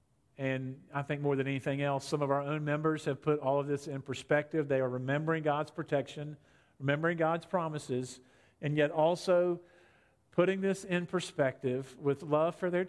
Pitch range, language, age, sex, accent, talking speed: 145-195 Hz, English, 50-69, male, American, 175 wpm